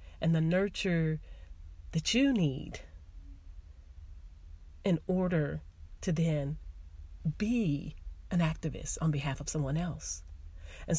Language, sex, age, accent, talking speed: English, female, 40-59, American, 105 wpm